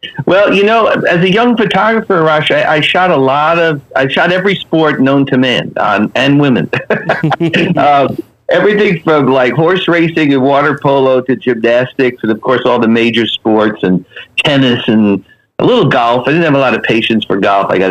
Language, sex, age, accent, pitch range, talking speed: English, male, 50-69, American, 115-155 Hz, 200 wpm